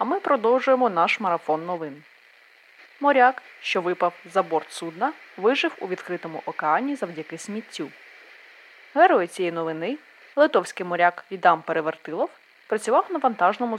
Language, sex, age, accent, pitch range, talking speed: Ukrainian, female, 20-39, native, 180-275 Hz, 120 wpm